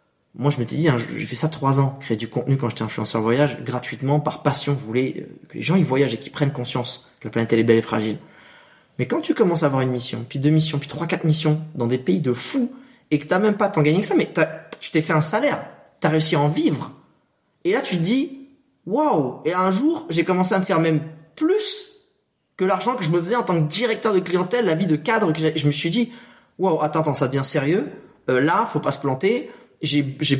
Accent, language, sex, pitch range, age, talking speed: French, French, male, 130-175 Hz, 20-39, 265 wpm